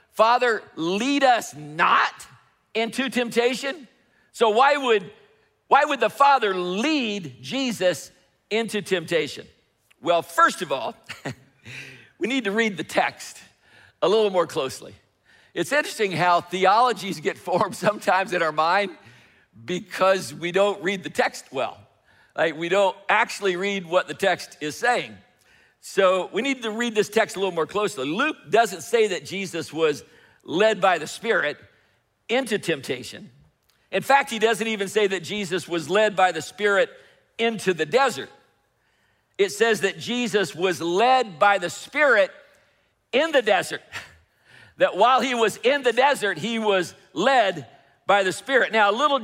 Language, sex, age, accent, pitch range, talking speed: English, male, 60-79, American, 175-235 Hz, 150 wpm